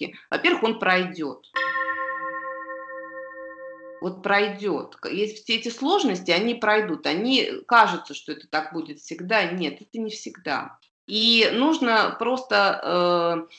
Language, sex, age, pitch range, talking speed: Russian, female, 30-49, 175-240 Hz, 110 wpm